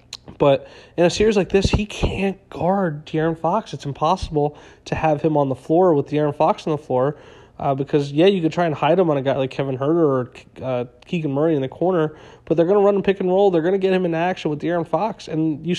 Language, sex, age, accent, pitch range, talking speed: English, male, 30-49, American, 130-160 Hz, 260 wpm